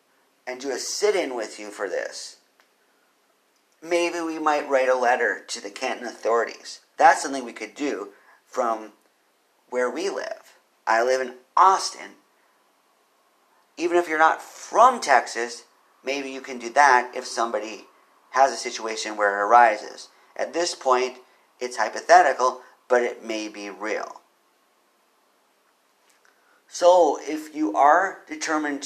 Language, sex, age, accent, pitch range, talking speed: English, male, 50-69, American, 110-160 Hz, 135 wpm